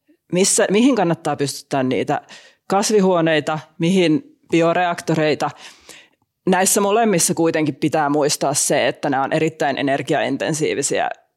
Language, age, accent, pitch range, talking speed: Finnish, 30-49, native, 145-175 Hz, 100 wpm